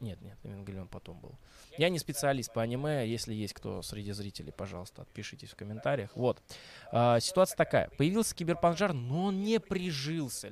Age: 20-39